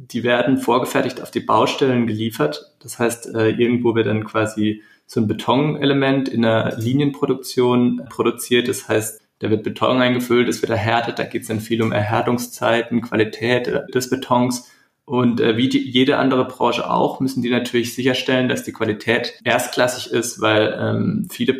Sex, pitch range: male, 110-125 Hz